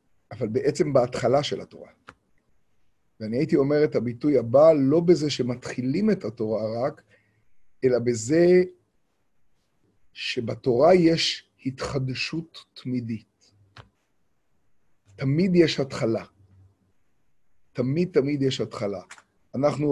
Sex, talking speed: male, 95 wpm